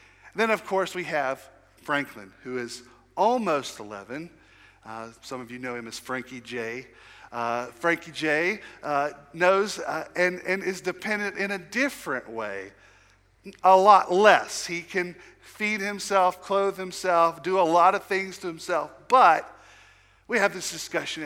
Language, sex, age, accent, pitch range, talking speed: English, male, 50-69, American, 130-195 Hz, 150 wpm